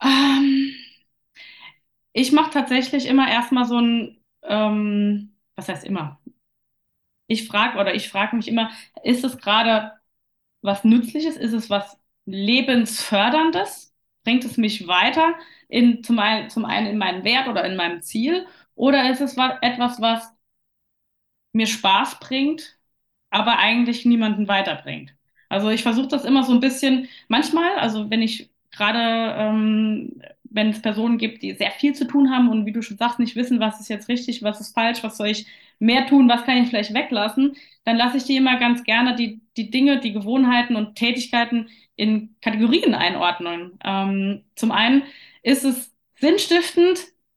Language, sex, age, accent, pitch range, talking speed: German, female, 20-39, German, 215-265 Hz, 160 wpm